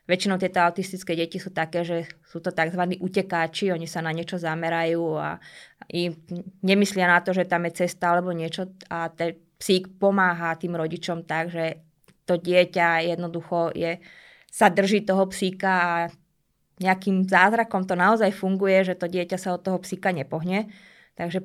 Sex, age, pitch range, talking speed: female, 20-39, 170-190 Hz, 155 wpm